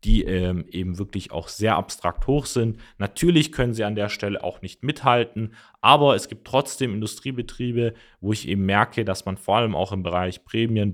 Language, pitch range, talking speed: German, 95-115 Hz, 185 wpm